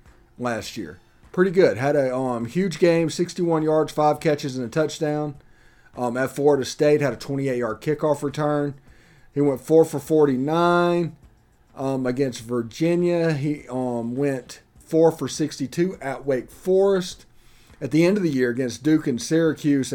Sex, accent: male, American